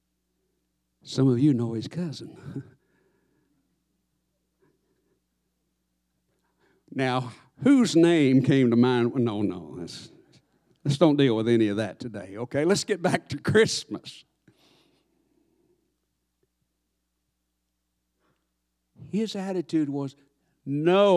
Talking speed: 95 wpm